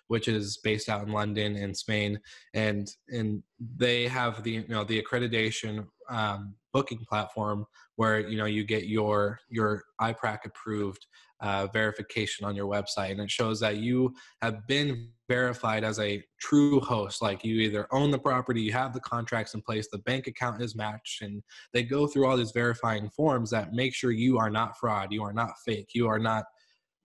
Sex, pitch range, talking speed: male, 105-120 Hz, 190 wpm